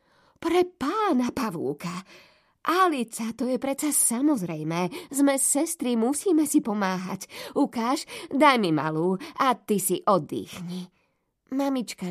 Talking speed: 110 wpm